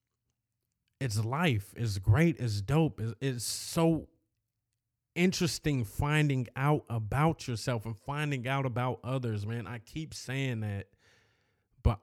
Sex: male